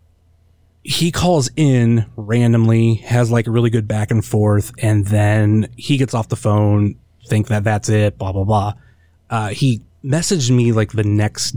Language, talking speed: English, 170 wpm